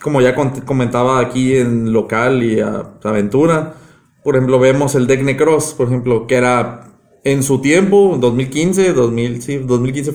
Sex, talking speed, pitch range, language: male, 155 wpm, 125-155 Hz, Spanish